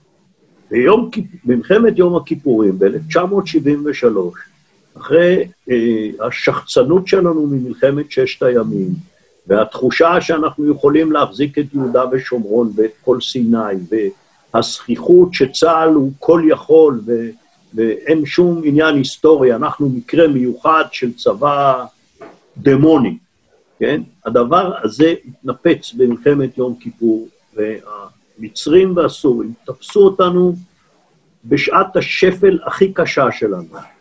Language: Hebrew